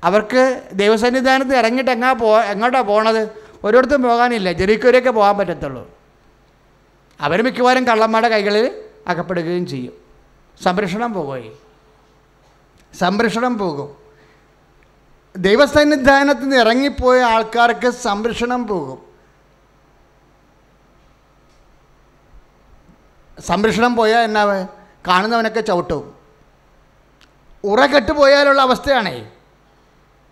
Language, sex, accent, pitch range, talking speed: English, male, Indian, 180-250 Hz, 50 wpm